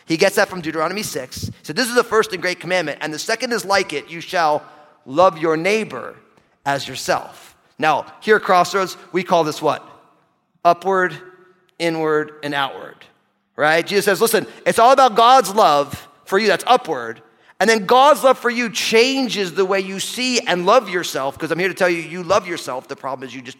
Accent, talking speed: American, 205 wpm